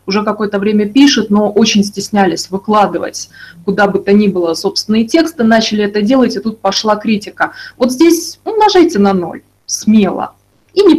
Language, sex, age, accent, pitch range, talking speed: Russian, female, 20-39, native, 195-255 Hz, 165 wpm